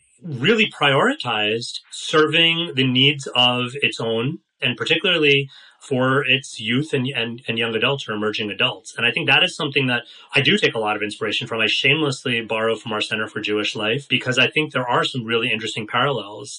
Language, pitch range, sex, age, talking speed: English, 115-145 Hz, male, 30-49, 195 wpm